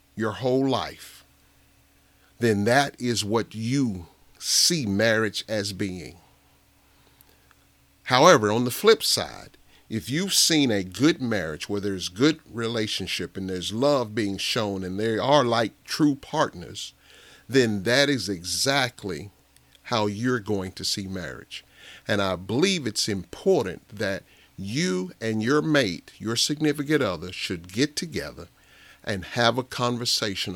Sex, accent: male, American